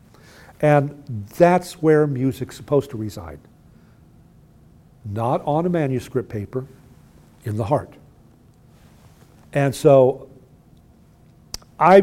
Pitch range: 125-155 Hz